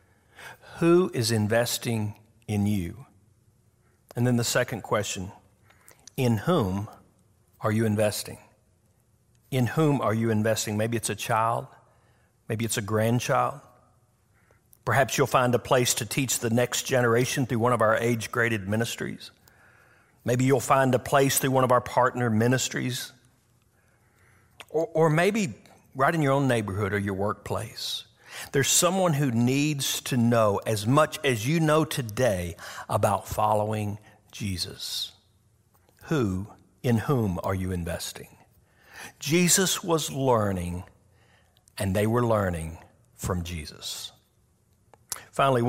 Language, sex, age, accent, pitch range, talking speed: English, male, 50-69, American, 105-125 Hz, 125 wpm